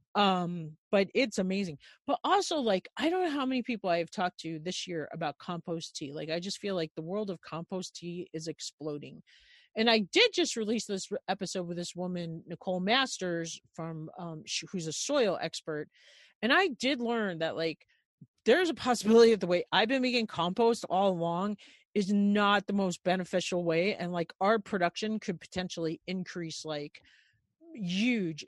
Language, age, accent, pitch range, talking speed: English, 40-59, American, 165-205 Hz, 180 wpm